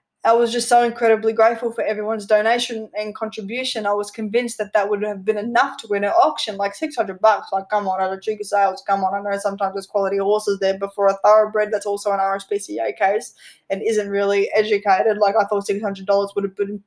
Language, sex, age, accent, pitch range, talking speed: English, female, 10-29, Australian, 200-225 Hz, 225 wpm